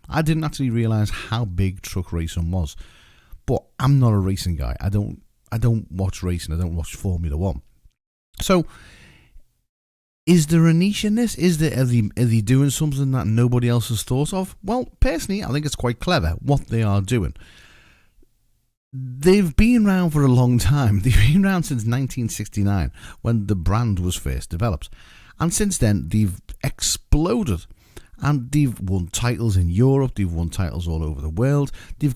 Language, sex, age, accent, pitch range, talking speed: English, male, 40-59, British, 95-130 Hz, 175 wpm